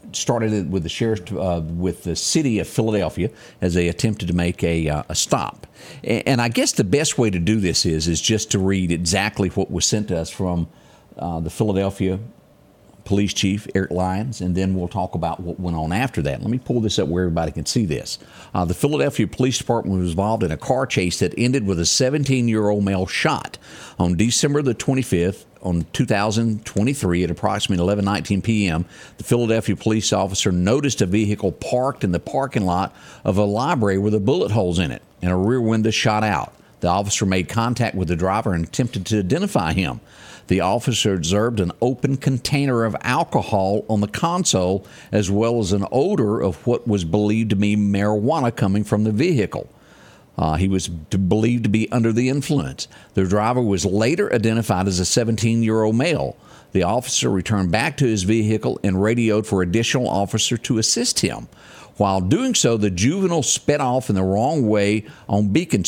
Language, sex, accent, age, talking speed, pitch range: English, male, American, 50-69, 185 wpm, 95-115 Hz